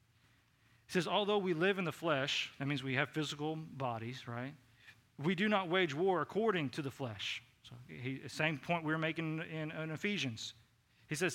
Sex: male